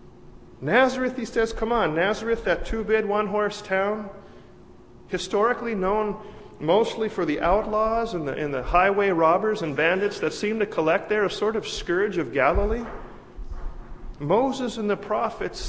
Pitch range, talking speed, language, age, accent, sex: 170-215 Hz, 145 wpm, English, 40-59, American, male